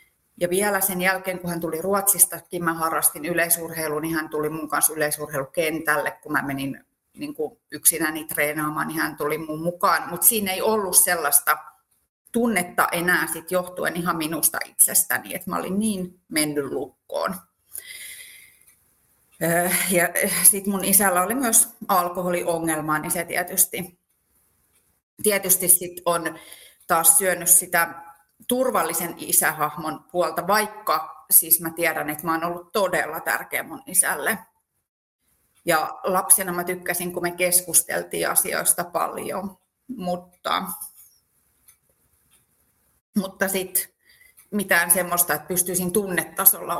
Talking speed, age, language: 120 wpm, 30-49, Finnish